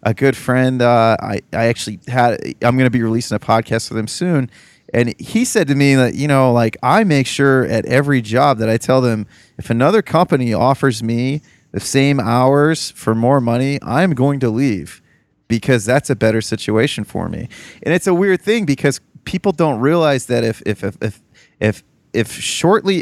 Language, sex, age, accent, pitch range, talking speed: English, male, 30-49, American, 115-140 Hz, 200 wpm